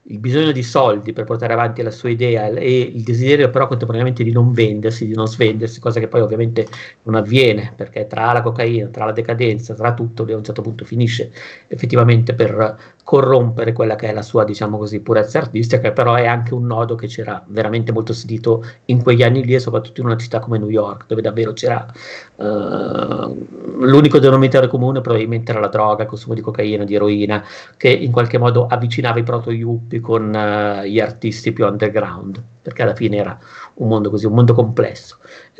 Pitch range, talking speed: 110-125 Hz, 195 wpm